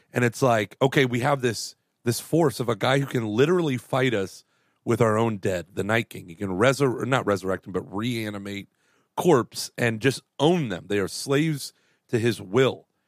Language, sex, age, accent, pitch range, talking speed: English, male, 40-59, American, 110-145 Hz, 195 wpm